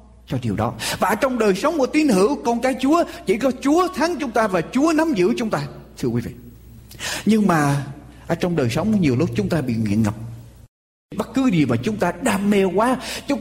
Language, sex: Vietnamese, male